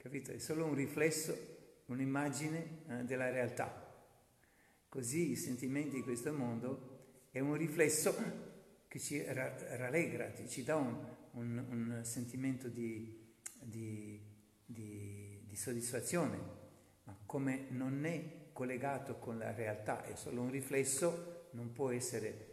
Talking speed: 125 wpm